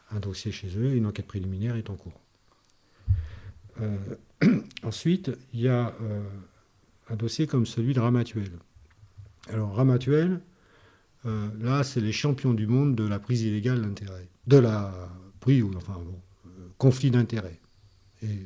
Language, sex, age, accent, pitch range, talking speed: French, male, 50-69, French, 100-125 Hz, 155 wpm